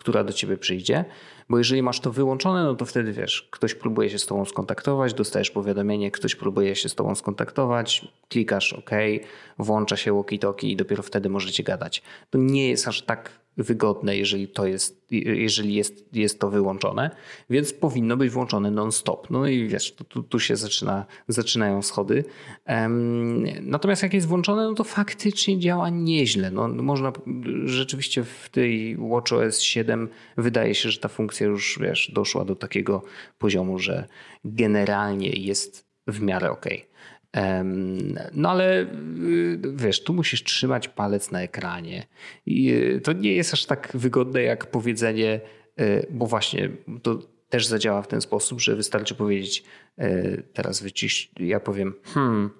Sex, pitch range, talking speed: male, 100-135 Hz, 150 wpm